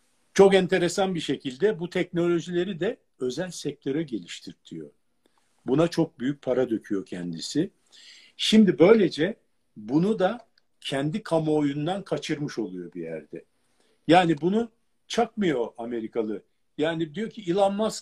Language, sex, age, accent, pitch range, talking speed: Turkish, male, 50-69, native, 120-185 Hz, 115 wpm